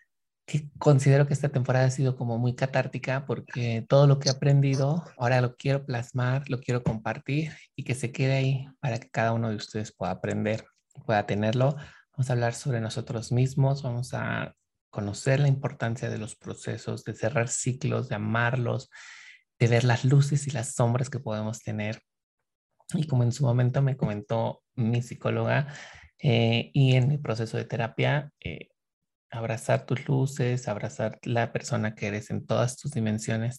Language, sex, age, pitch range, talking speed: Spanish, male, 30-49, 110-135 Hz, 170 wpm